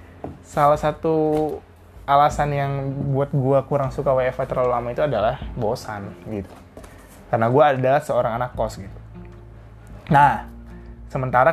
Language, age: Indonesian, 20-39